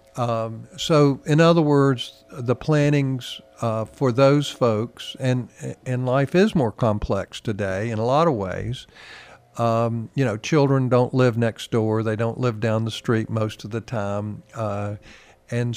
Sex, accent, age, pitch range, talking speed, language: male, American, 50-69, 110-145 Hz, 165 wpm, English